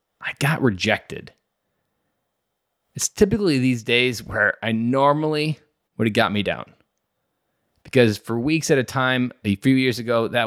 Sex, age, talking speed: male, 20-39, 150 wpm